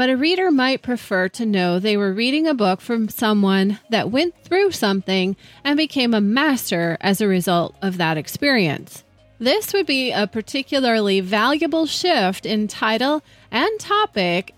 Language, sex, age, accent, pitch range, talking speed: English, female, 30-49, American, 195-275 Hz, 160 wpm